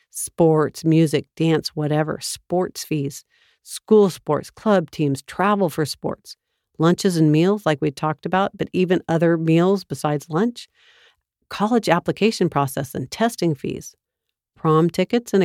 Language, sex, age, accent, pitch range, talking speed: English, female, 50-69, American, 155-195 Hz, 135 wpm